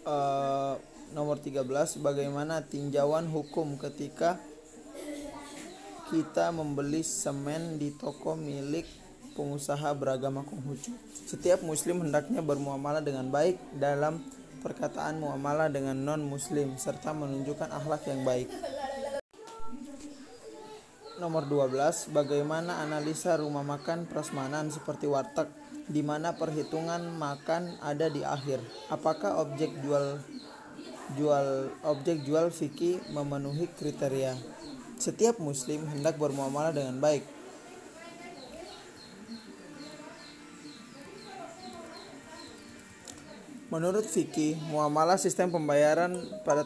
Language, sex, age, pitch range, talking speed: Indonesian, male, 20-39, 145-180 Hz, 95 wpm